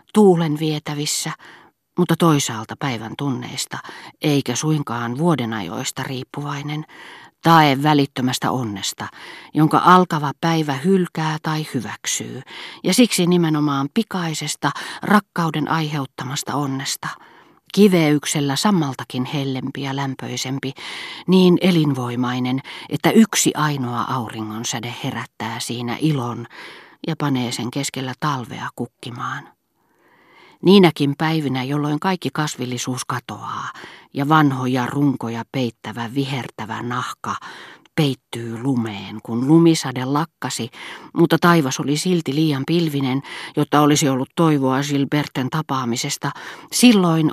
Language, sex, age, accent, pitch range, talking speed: Finnish, female, 40-59, native, 130-165 Hz, 100 wpm